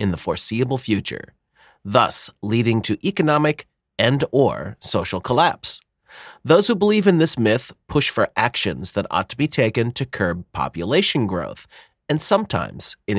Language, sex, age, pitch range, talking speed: English, male, 40-59, 100-150 Hz, 150 wpm